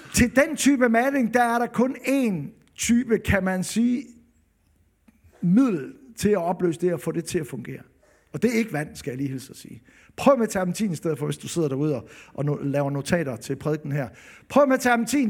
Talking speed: 215 wpm